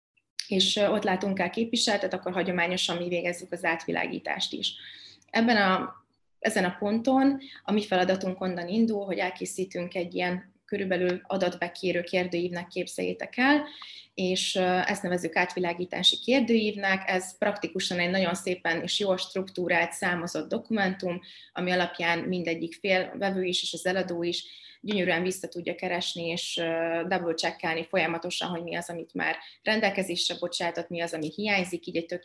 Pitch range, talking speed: 170-190 Hz, 140 wpm